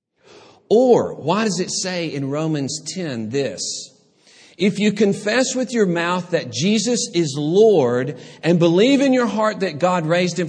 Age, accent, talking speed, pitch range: 50-69, American, 160 wpm, 135-205 Hz